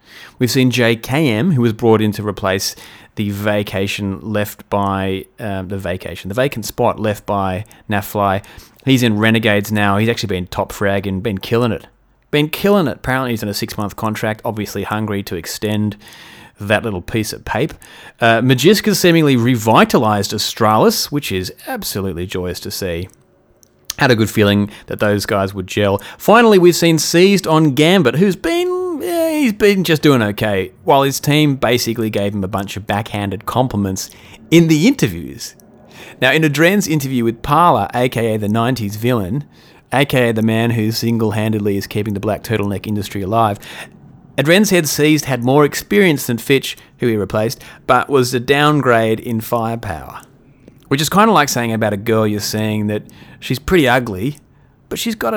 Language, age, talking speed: English, 30-49, 170 wpm